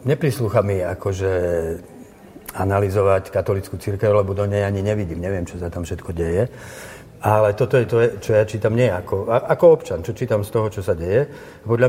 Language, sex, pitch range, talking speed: Slovak, male, 95-115 Hz, 180 wpm